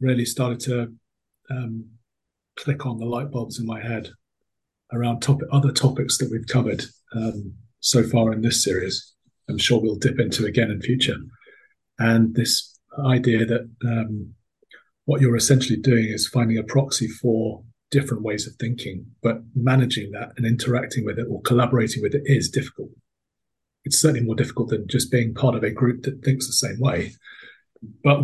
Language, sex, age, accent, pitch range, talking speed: English, male, 30-49, British, 115-130 Hz, 170 wpm